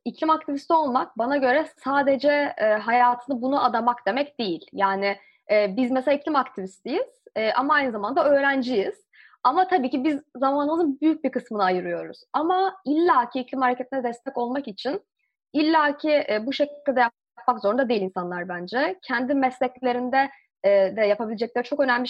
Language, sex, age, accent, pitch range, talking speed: Turkish, female, 20-39, native, 215-285 Hz, 150 wpm